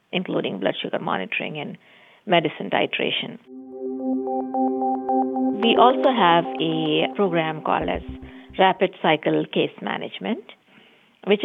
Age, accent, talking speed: 50-69, Indian, 100 wpm